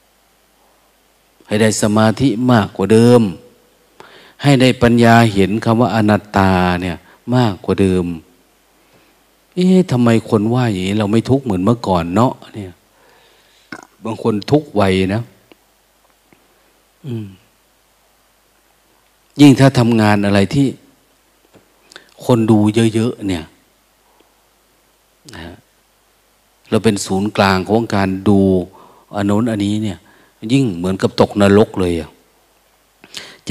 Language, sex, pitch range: Thai, male, 100-130 Hz